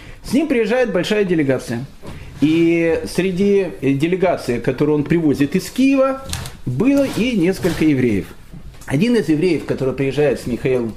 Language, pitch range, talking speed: Russian, 140-205 Hz, 130 wpm